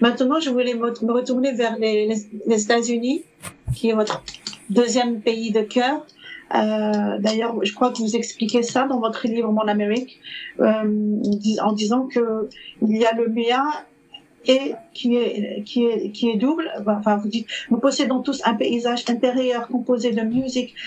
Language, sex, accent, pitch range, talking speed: French, female, French, 220-255 Hz, 165 wpm